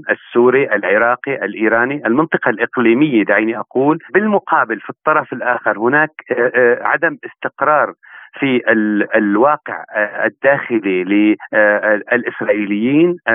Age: 40-59